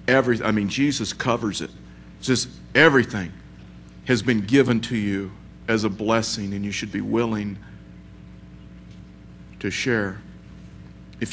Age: 50-69